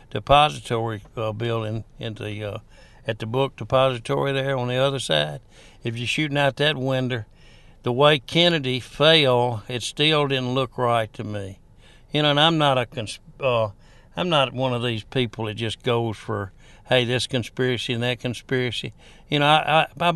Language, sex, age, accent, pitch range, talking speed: English, male, 60-79, American, 115-140 Hz, 180 wpm